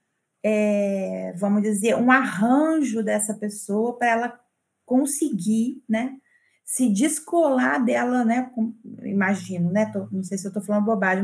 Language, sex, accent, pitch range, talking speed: Portuguese, female, Brazilian, 200-270 Hz, 140 wpm